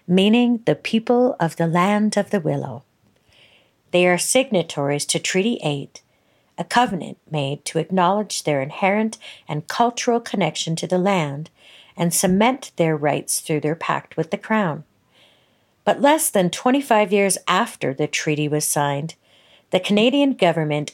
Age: 50-69